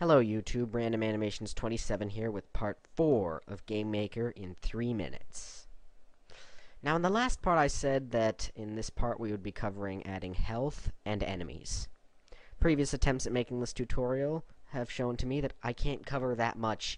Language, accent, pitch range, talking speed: English, American, 100-125 Hz, 175 wpm